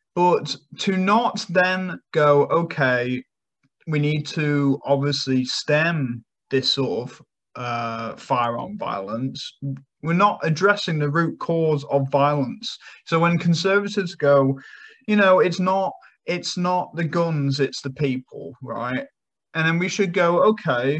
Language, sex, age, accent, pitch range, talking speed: English, male, 30-49, British, 135-175 Hz, 135 wpm